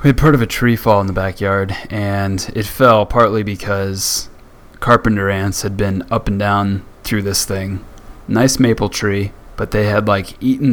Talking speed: 185 wpm